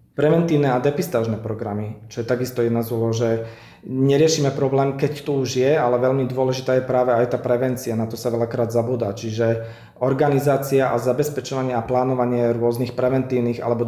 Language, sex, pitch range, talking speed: Slovak, male, 120-135 Hz, 165 wpm